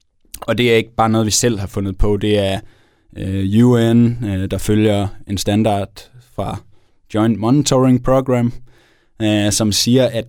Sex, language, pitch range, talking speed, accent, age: male, Danish, 100-115 Hz, 145 wpm, native, 20-39